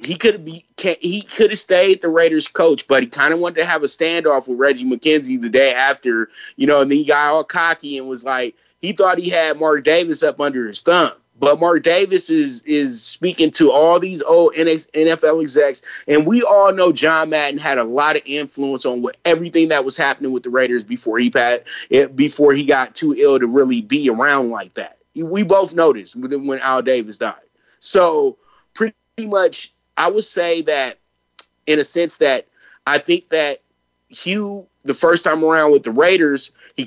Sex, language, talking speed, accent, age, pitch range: male, English, 200 wpm, American, 20-39, 140-195 Hz